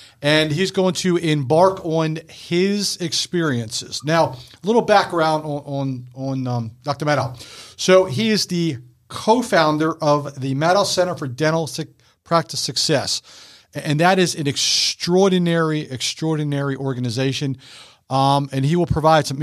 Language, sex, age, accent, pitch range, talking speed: English, male, 40-59, American, 140-165 Hz, 140 wpm